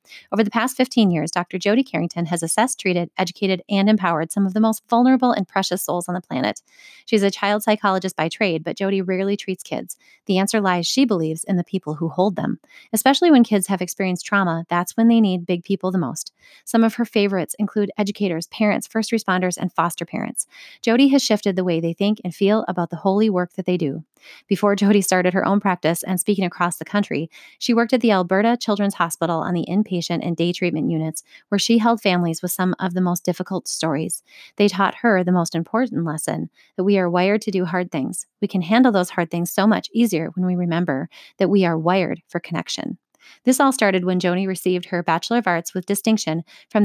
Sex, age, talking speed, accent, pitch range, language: female, 30-49, 220 wpm, American, 175-215 Hz, English